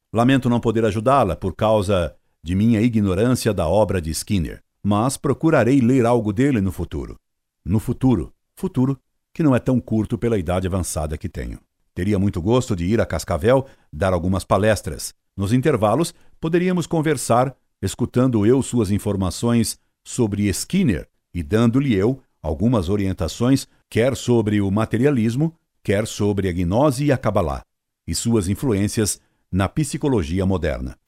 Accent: Brazilian